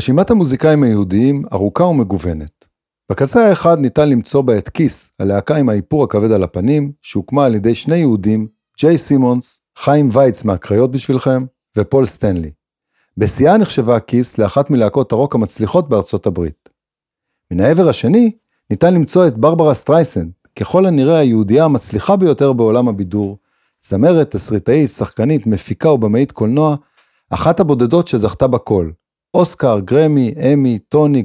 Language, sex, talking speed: Hebrew, male, 135 wpm